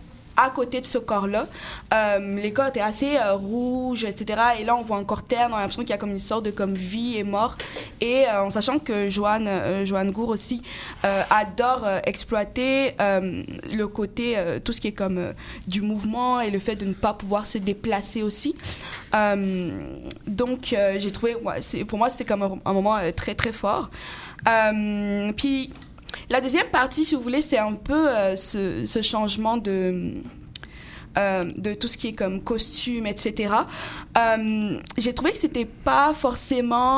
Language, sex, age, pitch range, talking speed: French, female, 20-39, 205-245 Hz, 195 wpm